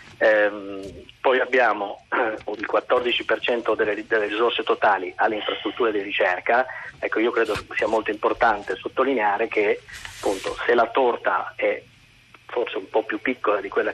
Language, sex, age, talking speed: Italian, male, 40-59, 145 wpm